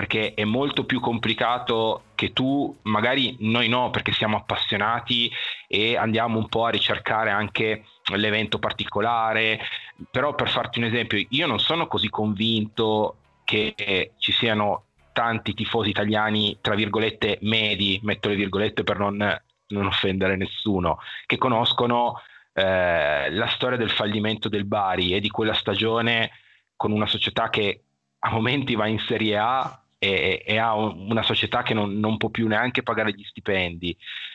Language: Italian